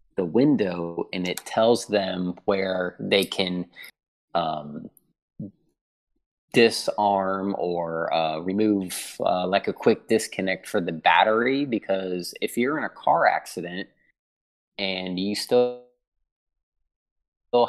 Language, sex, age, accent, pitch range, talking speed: English, male, 20-39, American, 90-105 Hz, 110 wpm